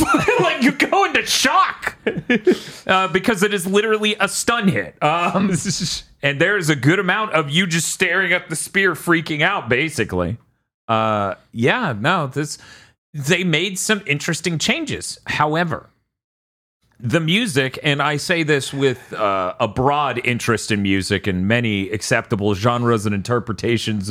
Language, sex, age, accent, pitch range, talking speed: English, male, 40-59, American, 110-175 Hz, 145 wpm